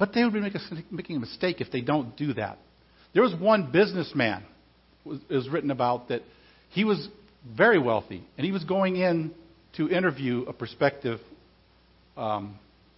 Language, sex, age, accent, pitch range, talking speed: English, male, 50-69, American, 120-205 Hz, 160 wpm